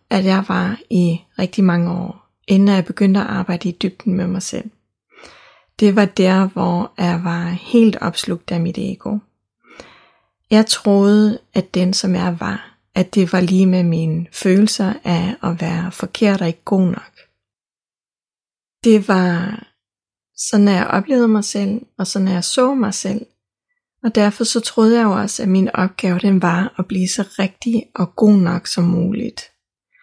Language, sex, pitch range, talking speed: Danish, female, 185-220 Hz, 170 wpm